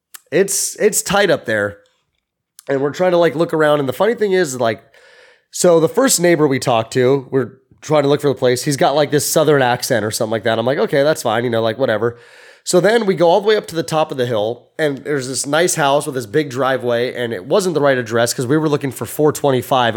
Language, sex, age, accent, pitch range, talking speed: English, male, 20-39, American, 120-155 Hz, 260 wpm